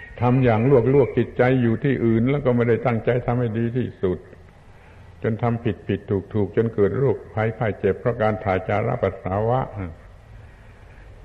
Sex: male